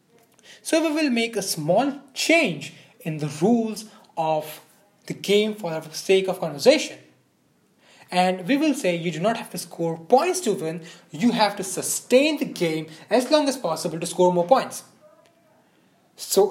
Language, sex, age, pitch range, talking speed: English, male, 20-39, 165-230 Hz, 165 wpm